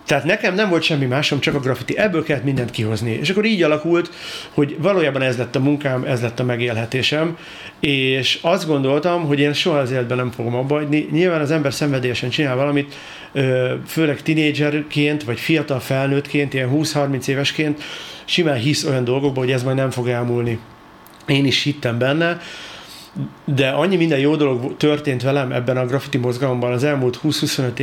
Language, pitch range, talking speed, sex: Hungarian, 130-155 Hz, 170 wpm, male